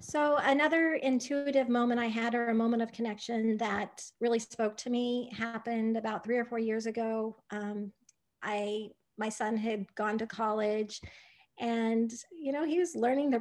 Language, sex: English, female